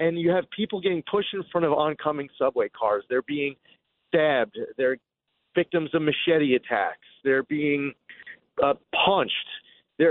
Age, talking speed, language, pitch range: 30-49, 150 wpm, English, 150-200 Hz